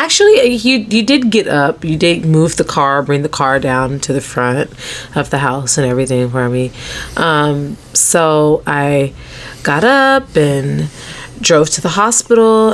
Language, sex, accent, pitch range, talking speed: English, female, American, 140-170 Hz, 165 wpm